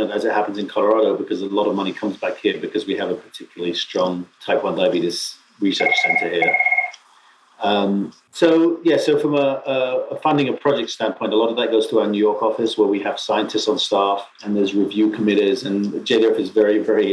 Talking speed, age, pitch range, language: 215 wpm, 40-59, 105-145 Hz, English